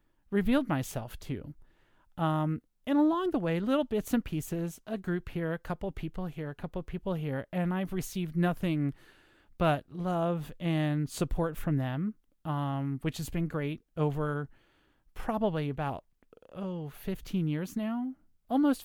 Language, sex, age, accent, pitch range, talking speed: English, male, 30-49, American, 150-190 Hz, 155 wpm